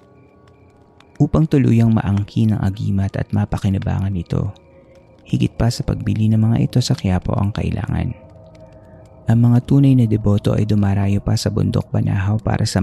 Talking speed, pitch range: 155 wpm, 100-115 Hz